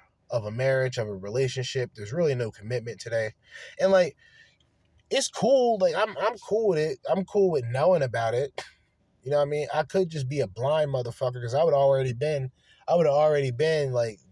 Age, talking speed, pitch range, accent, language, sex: 20-39, 210 wpm, 120-155 Hz, American, English, male